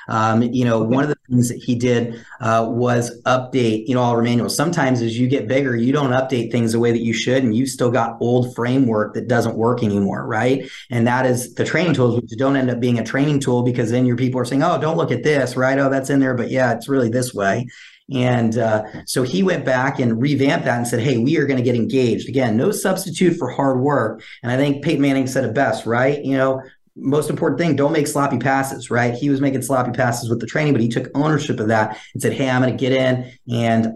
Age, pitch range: 30-49, 115-135 Hz